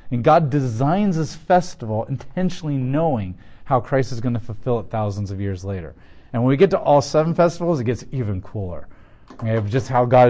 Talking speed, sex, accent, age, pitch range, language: 200 wpm, male, American, 30-49, 115-150 Hz, English